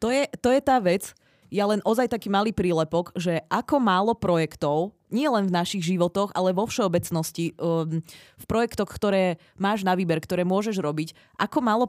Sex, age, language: female, 20-39, Czech